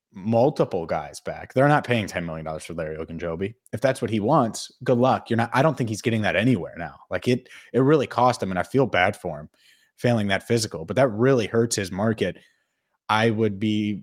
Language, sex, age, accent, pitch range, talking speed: English, male, 20-39, American, 105-130 Hz, 225 wpm